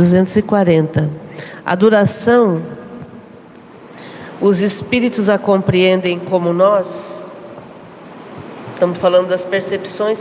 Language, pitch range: Portuguese, 175-200 Hz